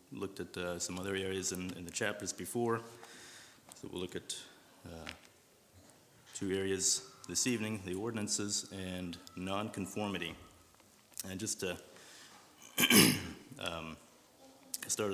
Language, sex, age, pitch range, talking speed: English, male, 30-49, 95-100 Hz, 115 wpm